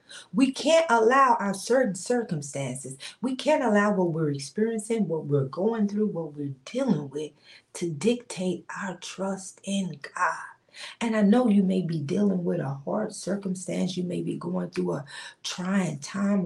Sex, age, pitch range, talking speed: female, 40-59, 180-220 Hz, 165 wpm